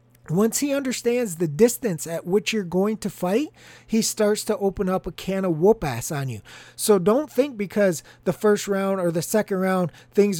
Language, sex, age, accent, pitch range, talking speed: English, male, 30-49, American, 185-225 Hz, 195 wpm